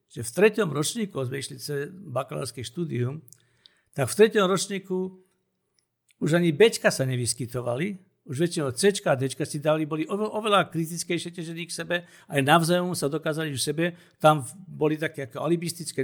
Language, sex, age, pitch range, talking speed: Slovak, male, 60-79, 145-185 Hz, 155 wpm